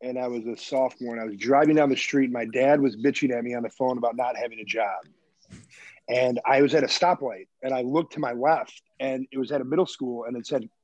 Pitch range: 130-155 Hz